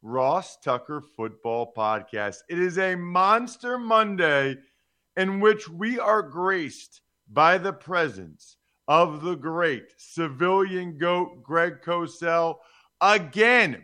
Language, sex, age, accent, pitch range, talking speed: English, male, 40-59, American, 145-185 Hz, 110 wpm